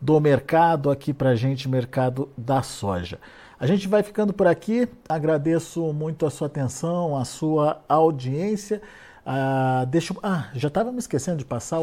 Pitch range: 135-175 Hz